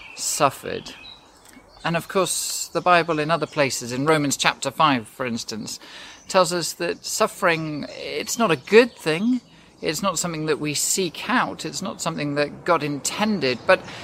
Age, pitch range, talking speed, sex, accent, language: 40-59, 115-170 Hz, 160 wpm, male, British, English